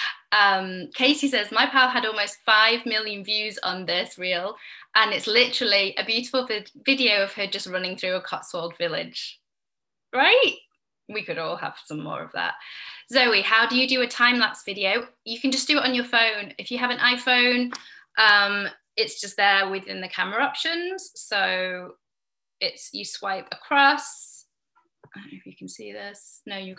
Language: English